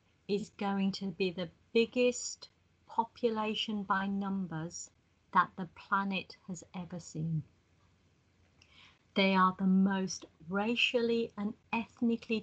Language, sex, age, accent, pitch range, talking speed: English, female, 50-69, British, 190-240 Hz, 105 wpm